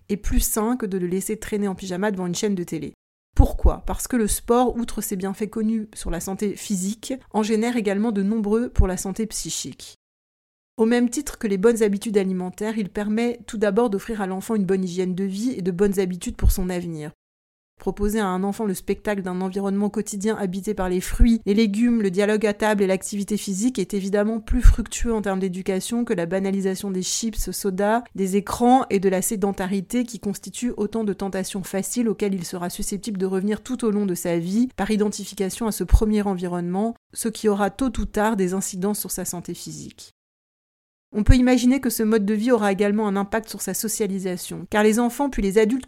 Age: 30-49